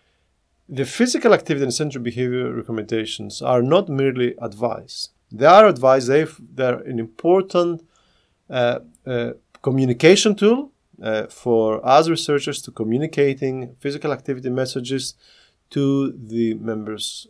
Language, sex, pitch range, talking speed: English, male, 115-150 Hz, 115 wpm